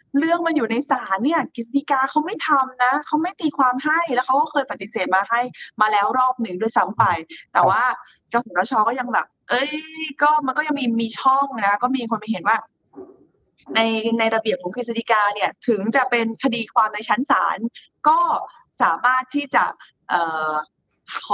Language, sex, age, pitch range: Thai, female, 20-39, 200-270 Hz